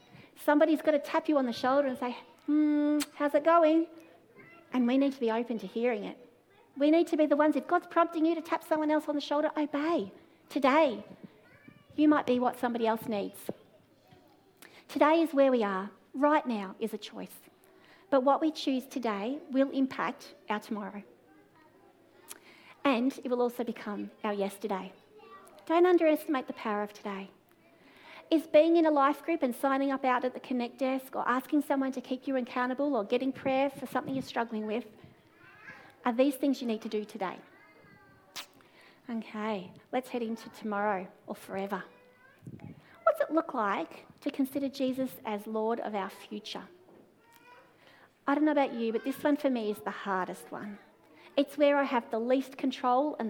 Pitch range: 225-295 Hz